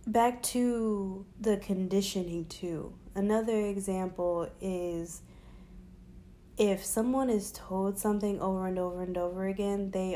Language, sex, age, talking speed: English, female, 20-39, 120 wpm